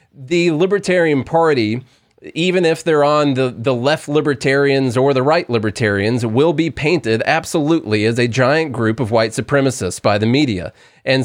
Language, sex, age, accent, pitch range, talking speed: English, male, 30-49, American, 120-145 Hz, 160 wpm